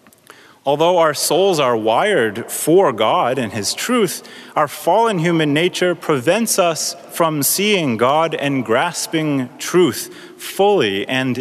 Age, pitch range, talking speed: 30-49, 135-180 Hz, 125 wpm